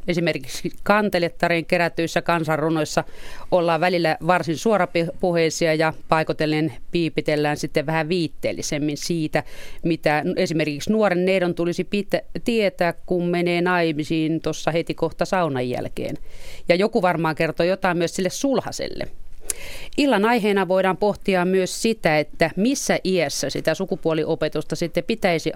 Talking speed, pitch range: 115 wpm, 160-185 Hz